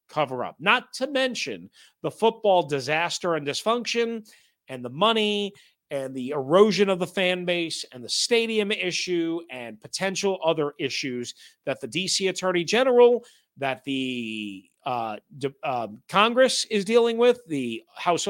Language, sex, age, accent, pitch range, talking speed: English, male, 40-59, American, 165-230 Hz, 140 wpm